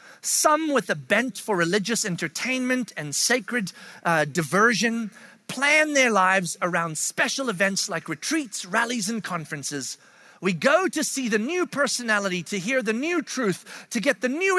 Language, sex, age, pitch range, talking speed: English, male, 40-59, 190-255 Hz, 155 wpm